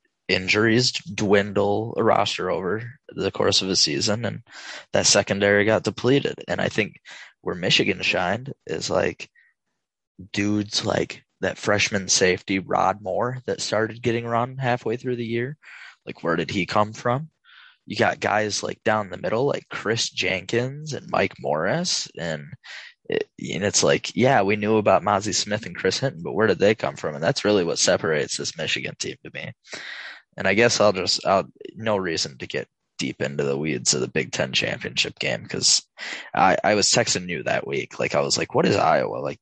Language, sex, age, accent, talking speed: English, male, 10-29, American, 185 wpm